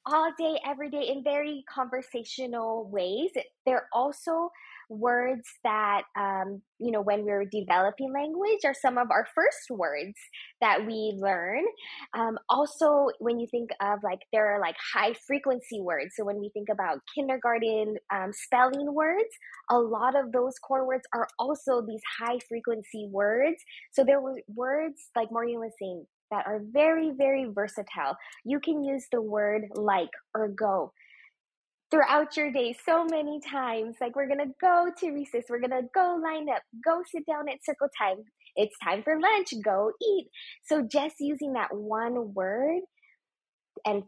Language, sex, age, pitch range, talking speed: English, female, 10-29, 220-295 Hz, 165 wpm